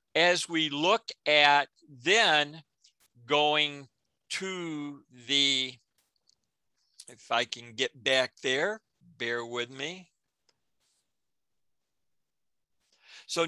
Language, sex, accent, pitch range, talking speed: English, male, American, 135-165 Hz, 80 wpm